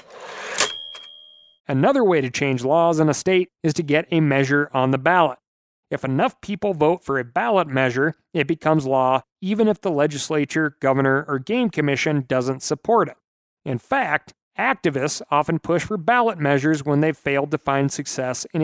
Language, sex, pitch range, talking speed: English, male, 140-180 Hz, 170 wpm